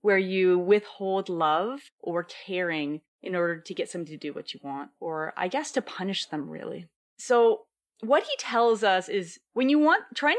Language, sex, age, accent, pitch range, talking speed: English, female, 30-49, American, 180-245 Hz, 190 wpm